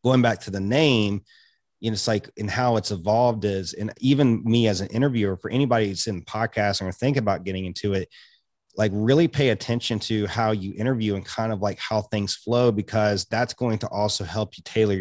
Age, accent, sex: 30-49, American, male